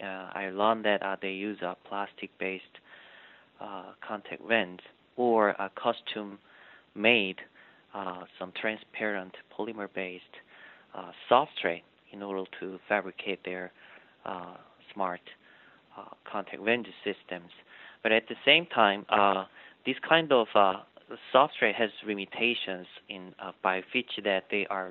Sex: male